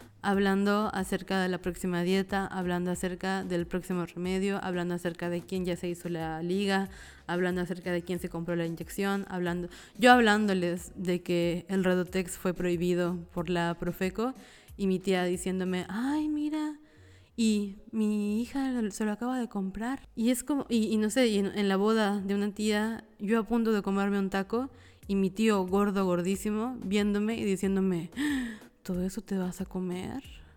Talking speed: 175 wpm